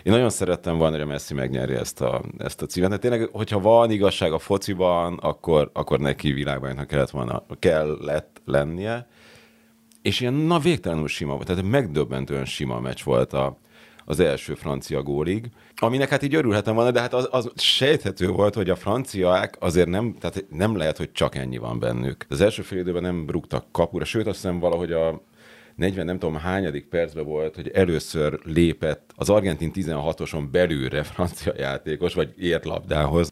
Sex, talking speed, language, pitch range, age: male, 175 wpm, Hungarian, 75-105 Hz, 30-49